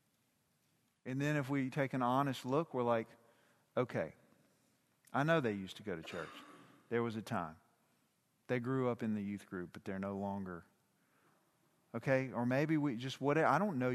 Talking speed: 180 wpm